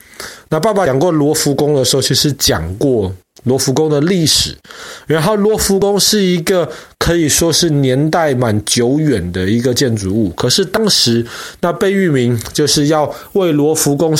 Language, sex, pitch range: Chinese, male, 120-165 Hz